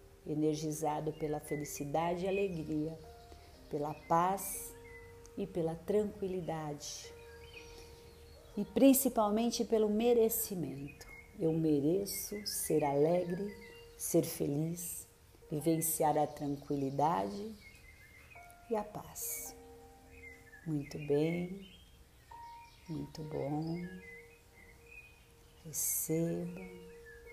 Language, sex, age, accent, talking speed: Portuguese, female, 50-69, Brazilian, 70 wpm